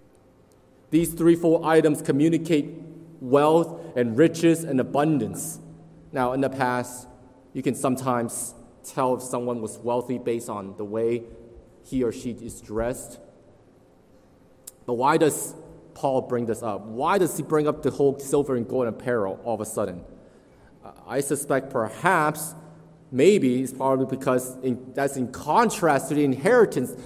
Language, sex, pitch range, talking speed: English, male, 115-145 Hz, 145 wpm